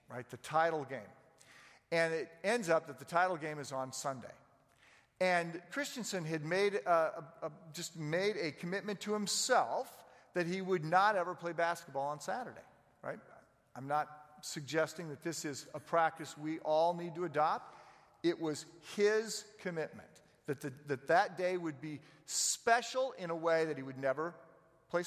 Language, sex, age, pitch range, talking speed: English, male, 50-69, 155-210 Hz, 170 wpm